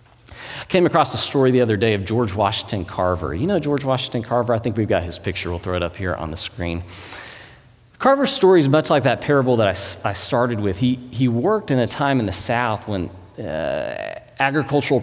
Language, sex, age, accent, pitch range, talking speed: English, male, 40-59, American, 100-140 Hz, 220 wpm